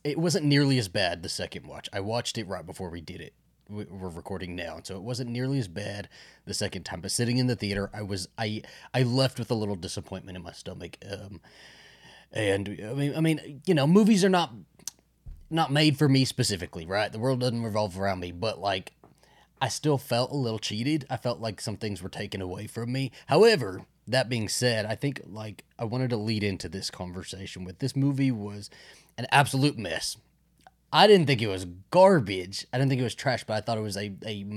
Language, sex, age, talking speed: English, male, 30-49, 220 wpm